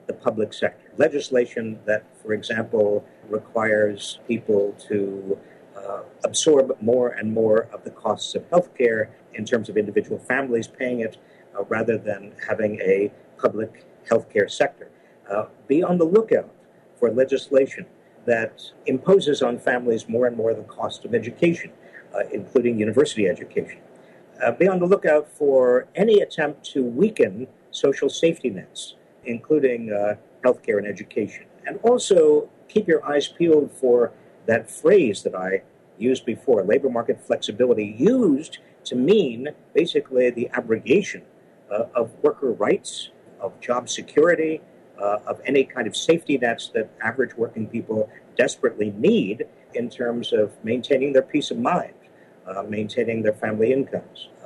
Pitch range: 110-175 Hz